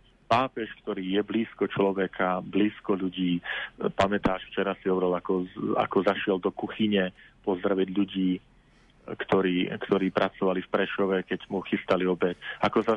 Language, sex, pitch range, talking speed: Slovak, male, 95-105 Hz, 135 wpm